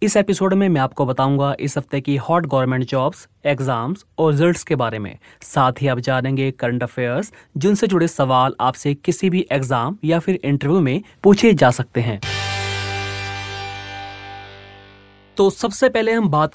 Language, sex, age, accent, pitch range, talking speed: Hindi, male, 30-49, native, 140-195 Hz, 160 wpm